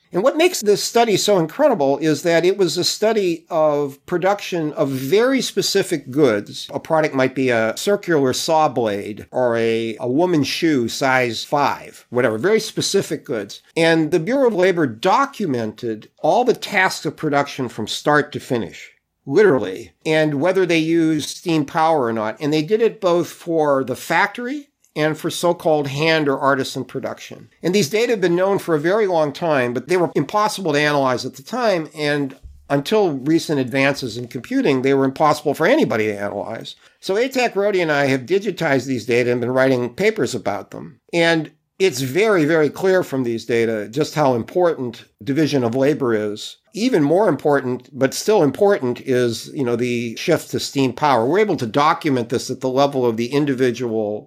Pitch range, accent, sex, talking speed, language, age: 130-175 Hz, American, male, 180 wpm, English, 50-69